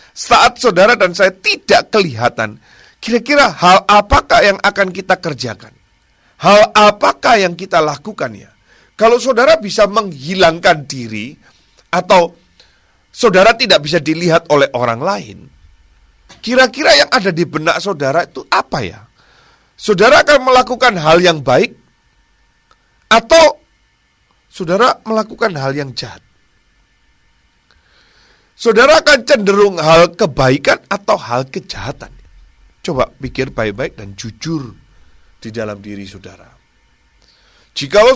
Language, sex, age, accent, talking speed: Indonesian, male, 40-59, native, 110 wpm